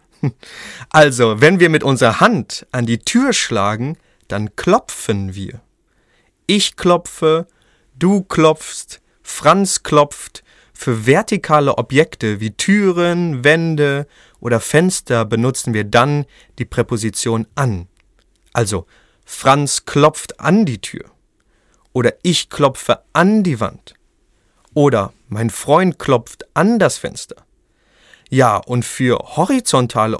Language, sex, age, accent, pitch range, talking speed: German, male, 30-49, German, 110-160 Hz, 110 wpm